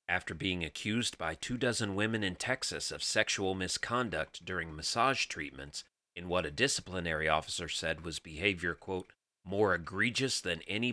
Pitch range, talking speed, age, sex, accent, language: 85-110 Hz, 155 wpm, 30-49, male, American, English